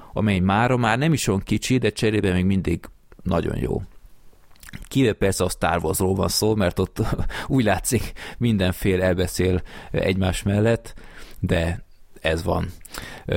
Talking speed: 130 wpm